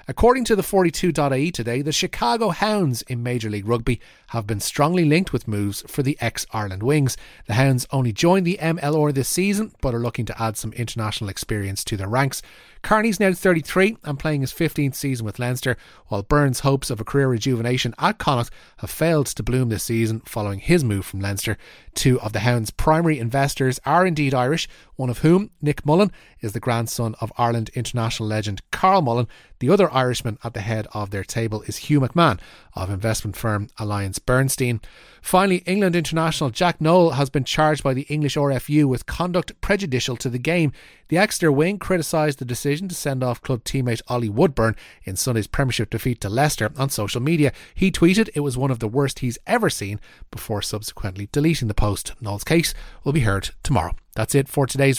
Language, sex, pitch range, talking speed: English, male, 110-155 Hz, 195 wpm